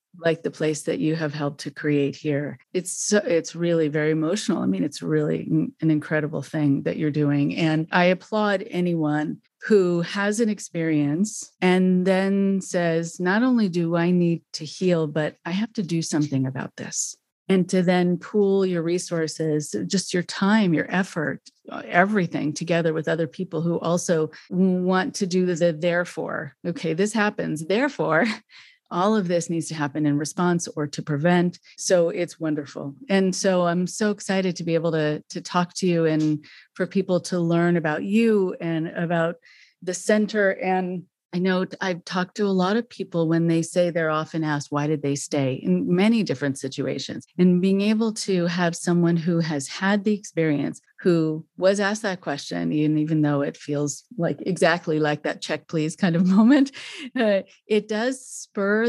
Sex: female